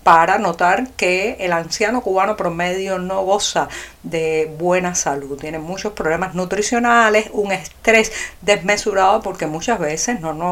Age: 50-69